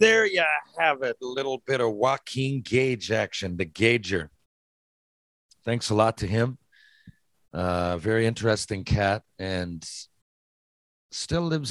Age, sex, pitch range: 50-69, male, 85-115 Hz